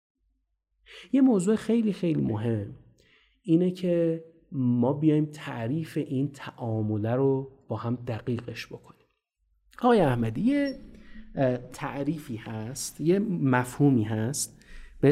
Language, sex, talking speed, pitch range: Persian, male, 105 wpm, 110-150 Hz